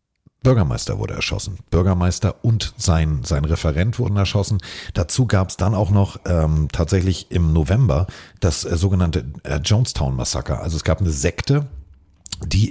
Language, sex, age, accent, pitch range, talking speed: German, male, 40-59, German, 80-110 Hz, 145 wpm